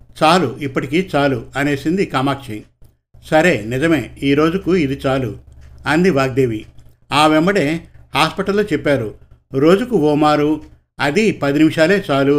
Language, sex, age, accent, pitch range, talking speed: Telugu, male, 50-69, native, 125-160 Hz, 110 wpm